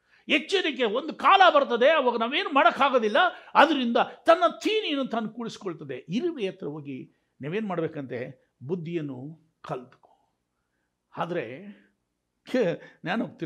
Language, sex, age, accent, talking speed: Kannada, male, 60-79, native, 95 wpm